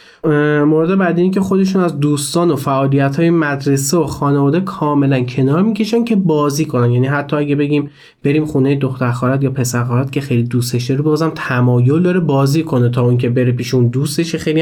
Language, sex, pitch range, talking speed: Persian, male, 125-160 Hz, 175 wpm